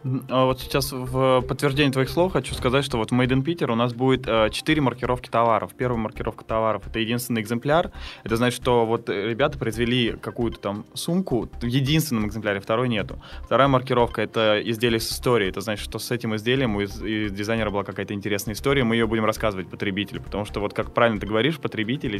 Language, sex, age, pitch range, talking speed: Russian, male, 20-39, 110-130 Hz, 195 wpm